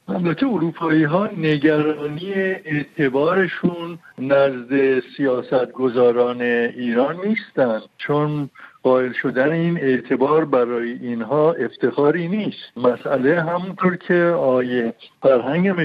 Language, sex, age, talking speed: Persian, male, 60-79, 90 wpm